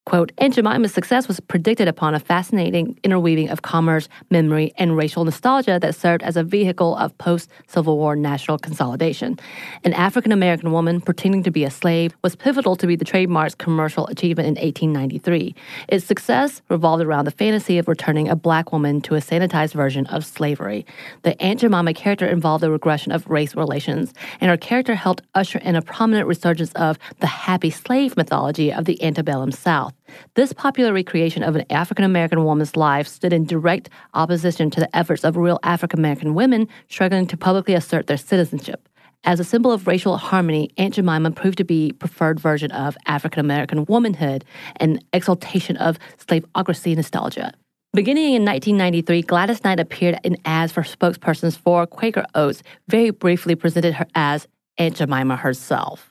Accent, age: American, 30-49